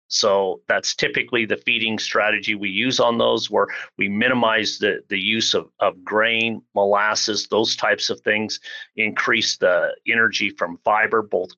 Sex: male